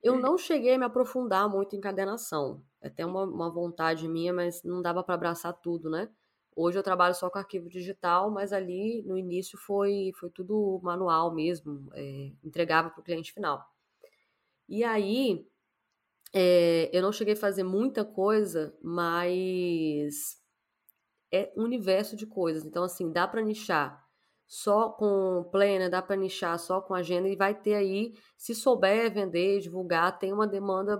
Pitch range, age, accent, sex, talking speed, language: 180-215 Hz, 10-29, Brazilian, female, 160 wpm, Portuguese